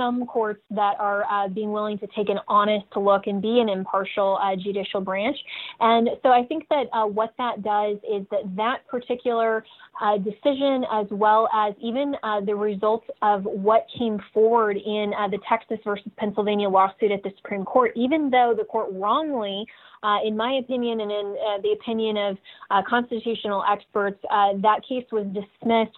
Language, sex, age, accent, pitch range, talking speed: English, female, 20-39, American, 205-240 Hz, 180 wpm